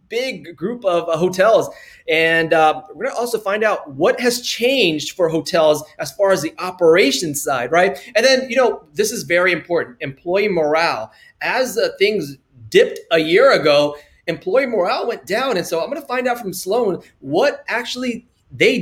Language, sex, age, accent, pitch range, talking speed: English, male, 30-49, American, 165-245 Hz, 185 wpm